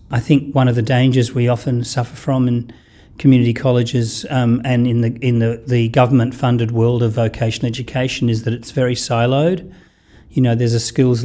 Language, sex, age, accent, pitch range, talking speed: English, male, 40-59, Australian, 115-130 Hz, 180 wpm